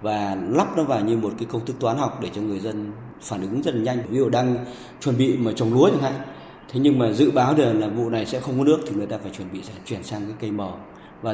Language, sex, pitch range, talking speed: Vietnamese, male, 105-130 Hz, 290 wpm